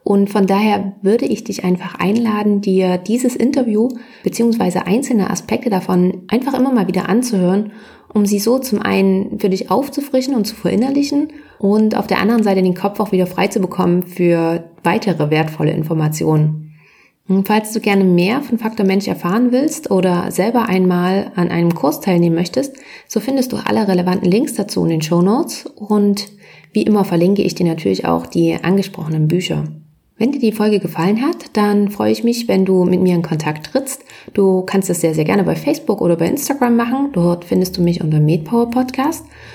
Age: 30-49